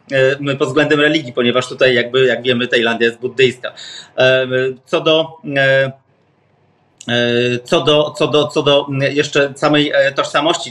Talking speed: 125 wpm